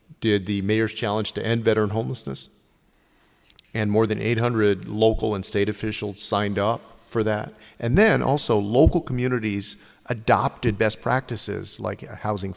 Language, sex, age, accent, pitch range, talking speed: English, male, 40-59, American, 100-115 Hz, 145 wpm